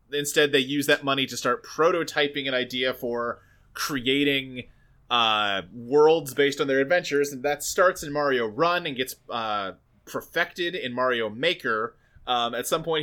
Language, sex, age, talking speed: English, male, 20-39, 160 wpm